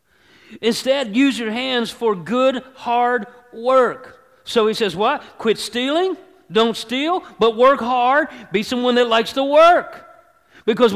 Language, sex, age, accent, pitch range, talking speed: English, male, 40-59, American, 200-255 Hz, 140 wpm